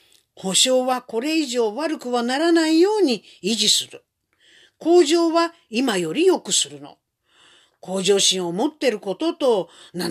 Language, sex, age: Japanese, female, 50-69